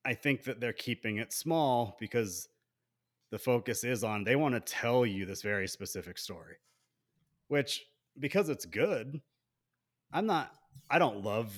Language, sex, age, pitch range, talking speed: English, male, 30-49, 100-130 Hz, 155 wpm